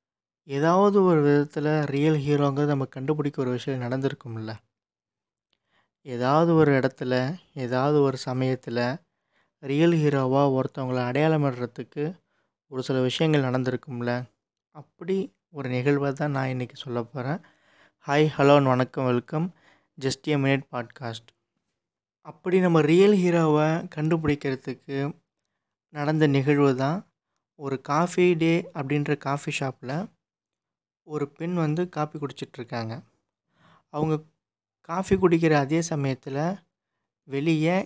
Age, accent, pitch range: 20-39, native, 130-160 Hz